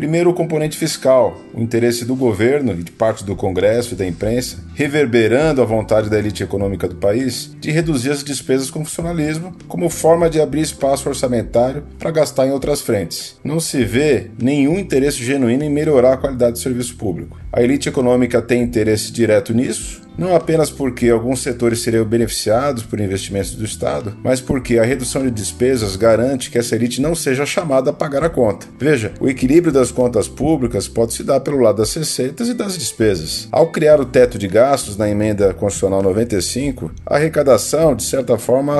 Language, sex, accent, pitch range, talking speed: Portuguese, male, Brazilian, 110-145 Hz, 185 wpm